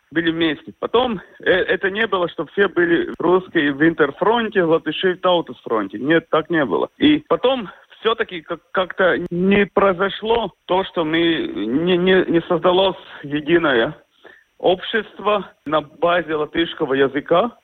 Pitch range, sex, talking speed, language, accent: 160-210 Hz, male, 130 wpm, Russian, native